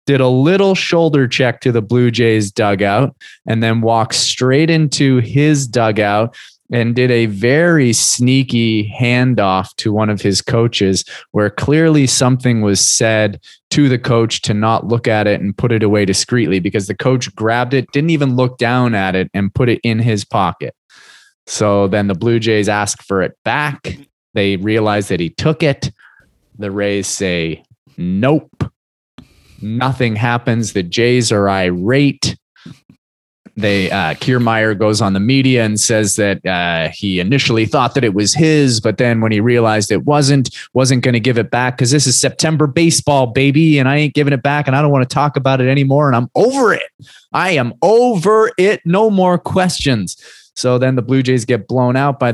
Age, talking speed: 20-39, 180 wpm